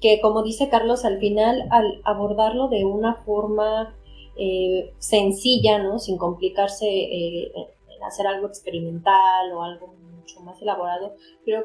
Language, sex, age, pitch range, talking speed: Spanish, female, 20-39, 190-230 Hz, 140 wpm